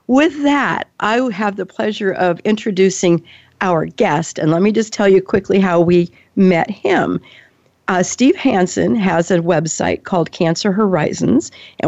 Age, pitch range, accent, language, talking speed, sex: 50-69, 175-210 Hz, American, English, 155 wpm, female